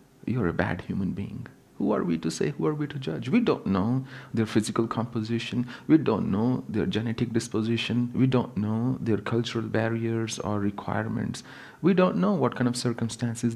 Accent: Indian